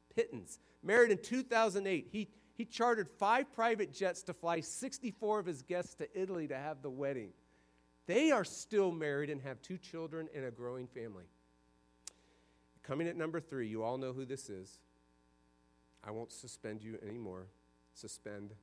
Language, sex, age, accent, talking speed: English, male, 50-69, American, 160 wpm